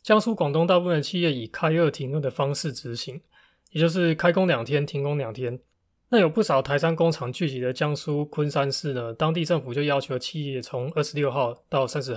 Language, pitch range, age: Chinese, 130-165 Hz, 20-39